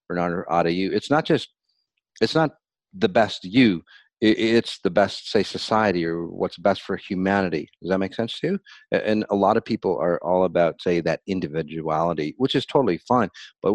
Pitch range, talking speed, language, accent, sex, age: 85-115 Hz, 190 wpm, English, American, male, 50-69